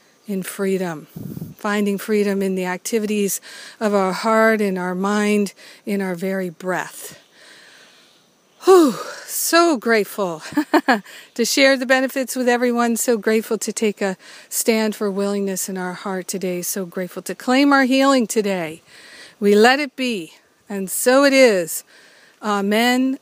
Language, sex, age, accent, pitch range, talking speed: English, female, 50-69, American, 200-245 Hz, 140 wpm